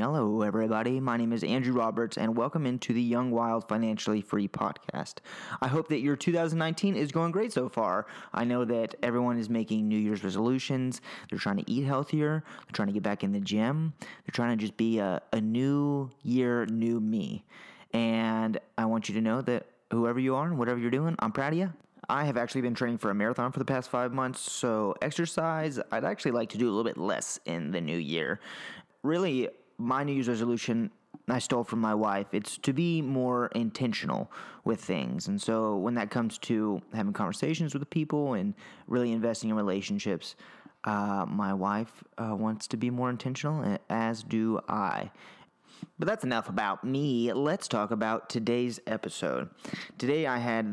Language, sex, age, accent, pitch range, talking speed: English, male, 20-39, American, 105-135 Hz, 195 wpm